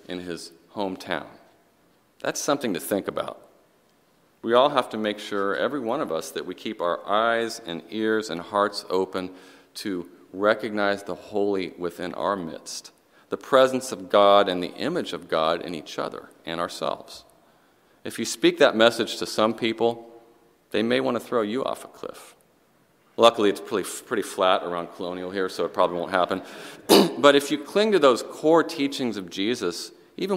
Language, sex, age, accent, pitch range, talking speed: English, male, 40-59, American, 90-115 Hz, 175 wpm